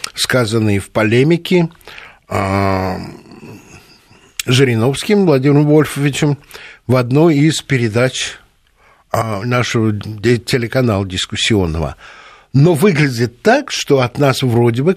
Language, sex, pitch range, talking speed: Russian, male, 115-160 Hz, 85 wpm